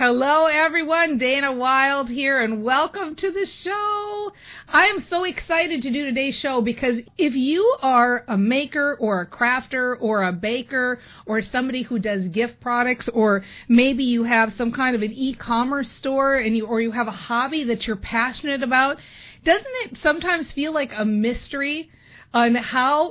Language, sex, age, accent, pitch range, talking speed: English, female, 40-59, American, 220-275 Hz, 170 wpm